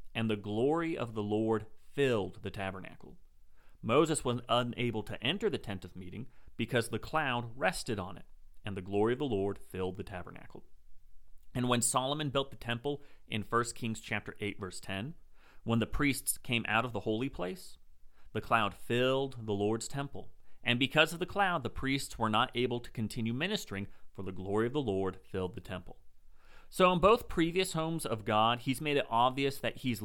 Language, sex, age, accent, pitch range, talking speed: English, male, 30-49, American, 95-130 Hz, 190 wpm